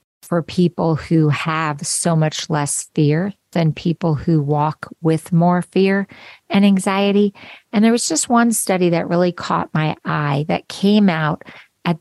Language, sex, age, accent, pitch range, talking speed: English, female, 50-69, American, 160-210 Hz, 160 wpm